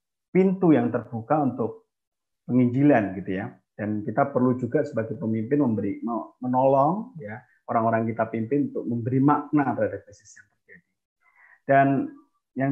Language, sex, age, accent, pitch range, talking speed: Indonesian, male, 30-49, native, 115-160 Hz, 130 wpm